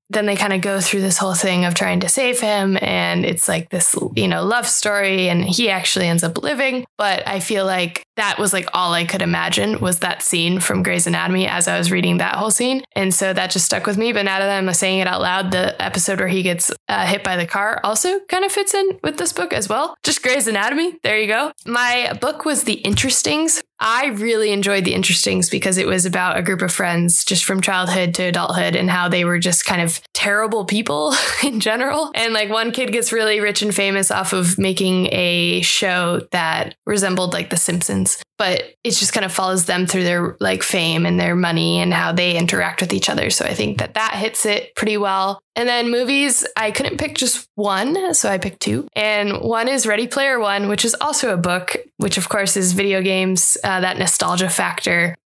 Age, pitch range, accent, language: 10-29, 180-220 Hz, American, English